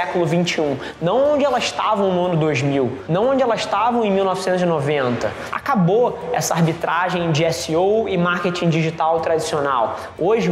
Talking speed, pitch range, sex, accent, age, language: 145 wpm, 160-195 Hz, male, Brazilian, 20-39, Portuguese